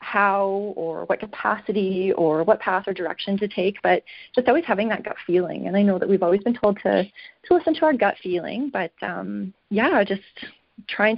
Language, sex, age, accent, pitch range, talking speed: English, female, 30-49, American, 185-260 Hz, 205 wpm